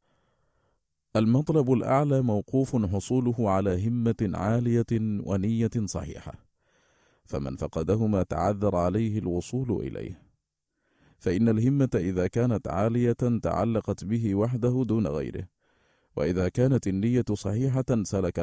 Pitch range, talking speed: 95-120 Hz, 100 wpm